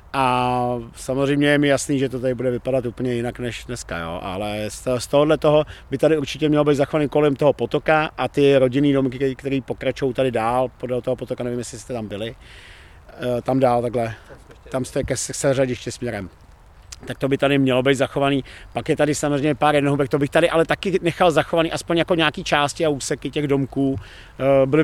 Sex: male